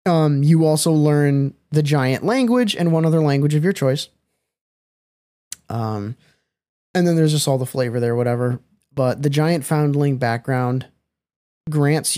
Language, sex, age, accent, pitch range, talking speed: English, male, 20-39, American, 130-155 Hz, 150 wpm